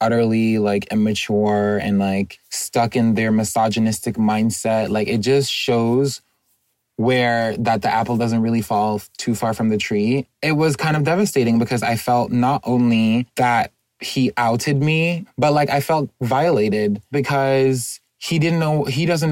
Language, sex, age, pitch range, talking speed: English, male, 20-39, 115-135 Hz, 160 wpm